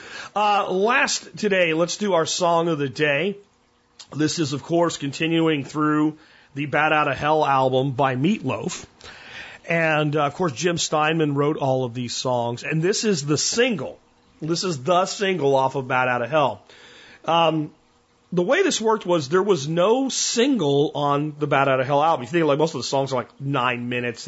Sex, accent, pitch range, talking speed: male, American, 130-175 Hz, 195 wpm